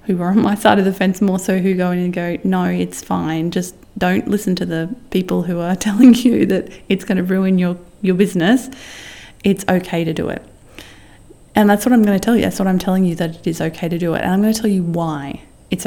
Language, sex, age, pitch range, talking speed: English, female, 20-39, 170-220 Hz, 260 wpm